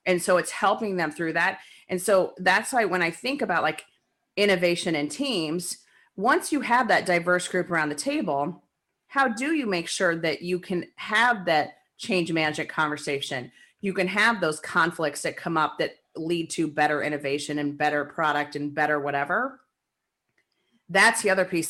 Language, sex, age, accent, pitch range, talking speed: English, female, 30-49, American, 155-195 Hz, 175 wpm